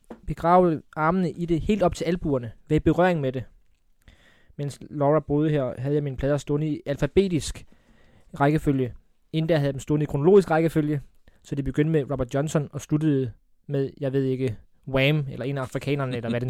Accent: native